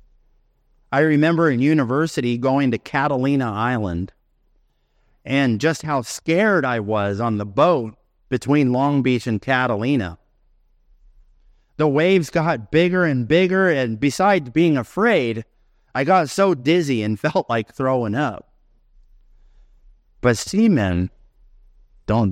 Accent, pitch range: American, 110-180 Hz